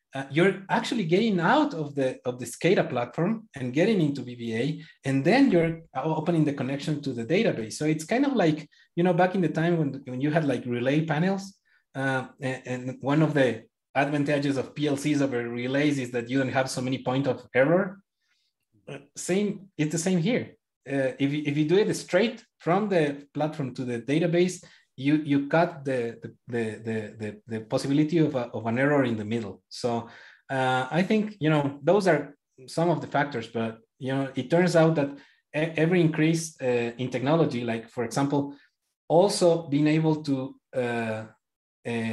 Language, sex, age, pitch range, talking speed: English, male, 30-49, 125-160 Hz, 190 wpm